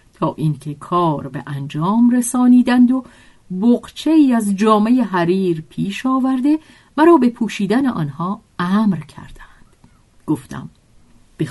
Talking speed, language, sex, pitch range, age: 110 wpm, Persian, female, 155-240 Hz, 50-69